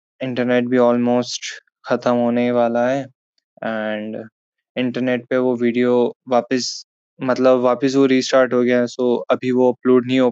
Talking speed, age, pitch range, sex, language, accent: 150 wpm, 20-39, 120-130 Hz, male, Hindi, native